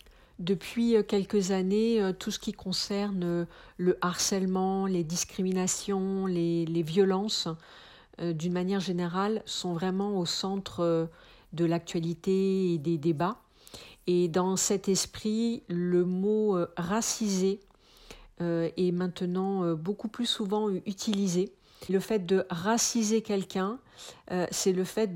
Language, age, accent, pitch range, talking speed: French, 50-69, French, 175-200 Hz, 110 wpm